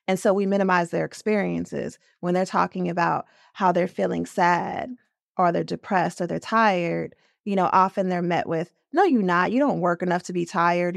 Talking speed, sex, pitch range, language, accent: 195 wpm, female, 175-200 Hz, English, American